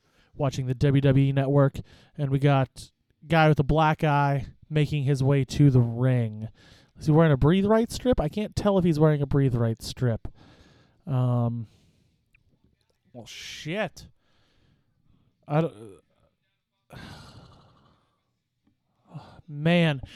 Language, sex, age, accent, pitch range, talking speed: English, male, 30-49, American, 125-155 Hz, 120 wpm